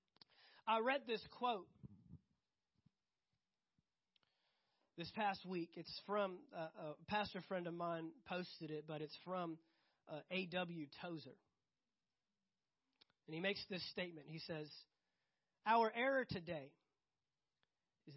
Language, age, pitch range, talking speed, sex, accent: English, 30-49, 160-210 Hz, 110 wpm, male, American